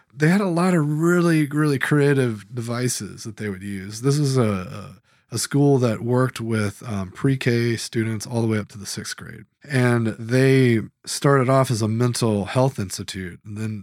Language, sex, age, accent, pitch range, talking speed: English, male, 20-39, American, 110-135 Hz, 185 wpm